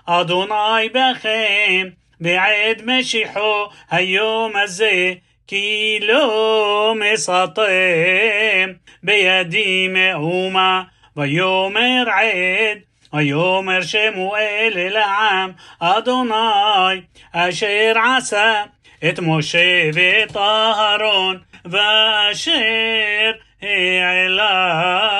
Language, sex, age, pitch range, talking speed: Hebrew, male, 30-49, 180-220 Hz, 55 wpm